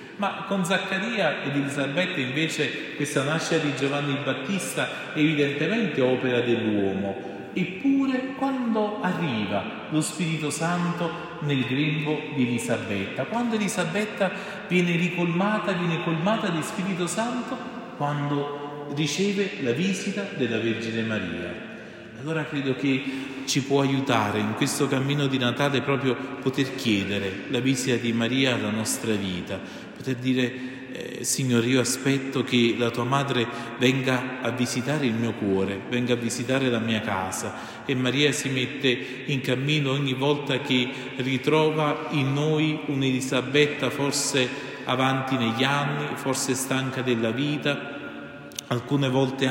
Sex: male